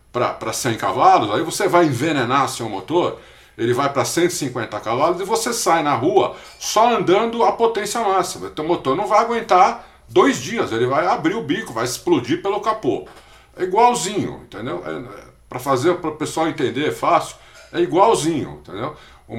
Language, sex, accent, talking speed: Portuguese, male, Brazilian, 165 wpm